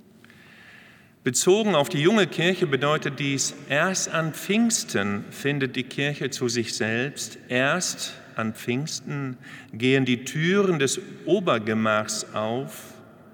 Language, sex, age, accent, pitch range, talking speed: German, male, 50-69, German, 120-155 Hz, 115 wpm